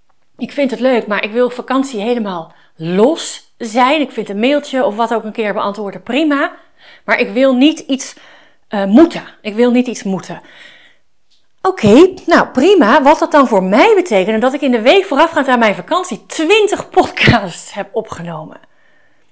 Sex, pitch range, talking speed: female, 210-285 Hz, 175 wpm